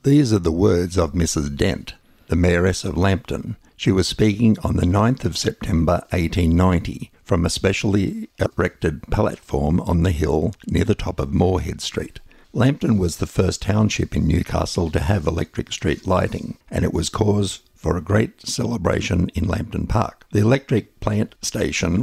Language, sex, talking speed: English, male, 165 wpm